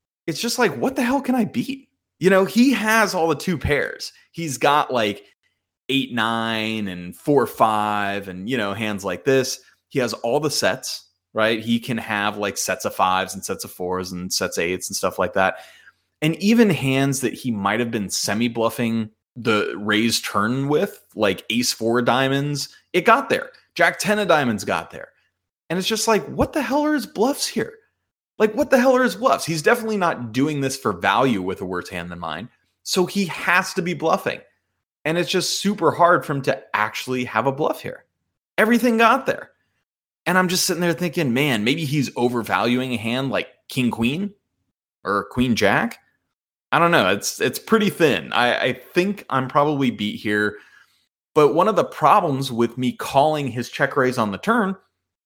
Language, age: English, 30-49